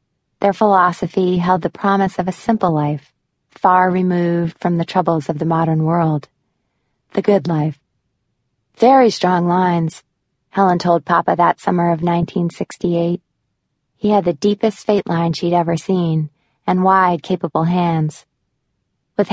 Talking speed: 140 wpm